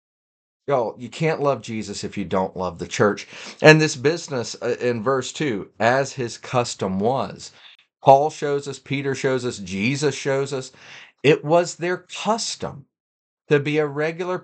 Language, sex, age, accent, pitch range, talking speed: English, male, 40-59, American, 115-180 Hz, 160 wpm